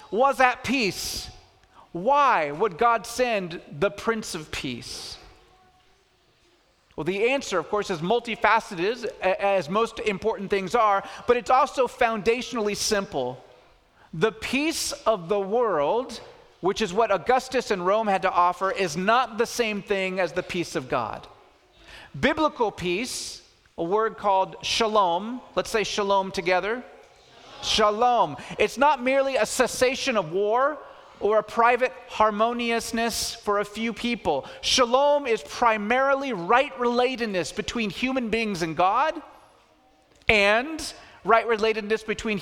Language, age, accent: English, 40-59, American